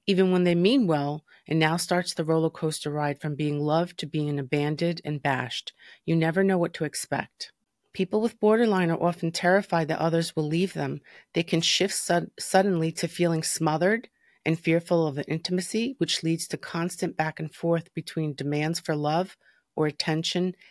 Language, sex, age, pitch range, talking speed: English, female, 30-49, 155-180 Hz, 185 wpm